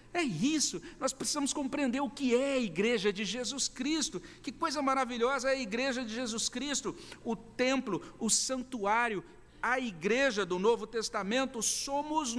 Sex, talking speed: male, 155 wpm